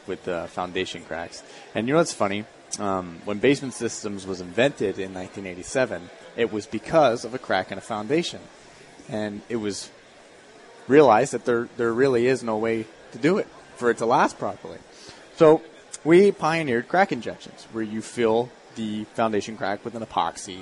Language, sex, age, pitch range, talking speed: English, male, 30-49, 100-125 Hz, 170 wpm